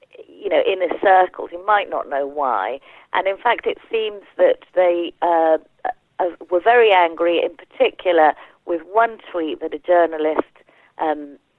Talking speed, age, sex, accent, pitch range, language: 150 wpm, 40-59, female, British, 155-235 Hz, English